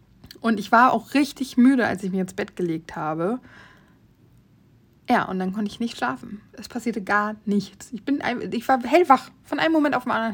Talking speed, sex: 195 wpm, female